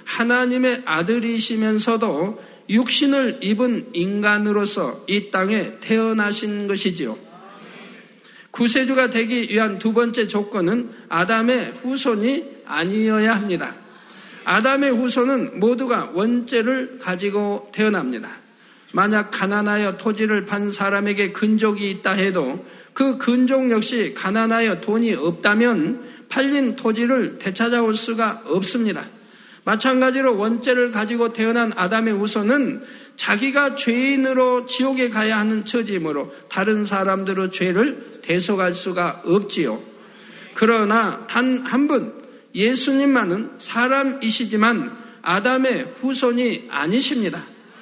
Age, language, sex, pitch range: 50-69, Korean, male, 210-250 Hz